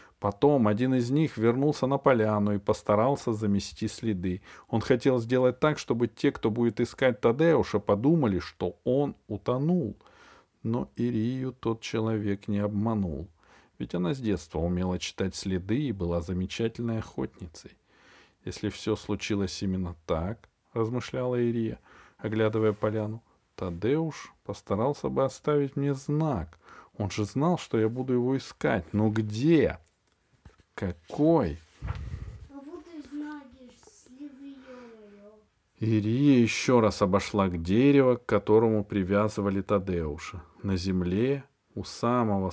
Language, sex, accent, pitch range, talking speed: Russian, male, native, 95-130 Hz, 115 wpm